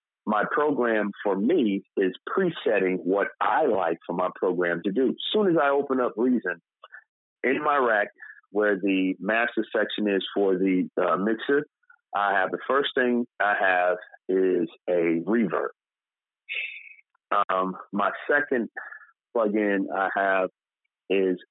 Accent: American